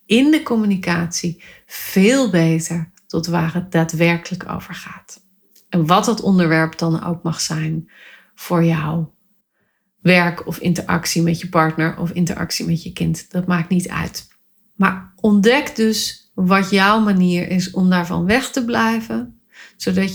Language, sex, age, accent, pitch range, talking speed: Dutch, female, 30-49, Dutch, 175-215 Hz, 145 wpm